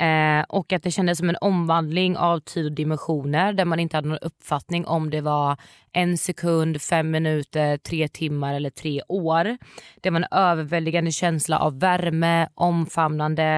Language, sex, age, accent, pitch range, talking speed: Swedish, female, 20-39, native, 150-180 Hz, 155 wpm